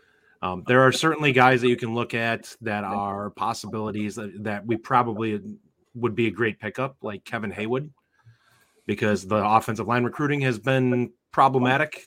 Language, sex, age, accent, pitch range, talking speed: English, male, 30-49, American, 115-150 Hz, 165 wpm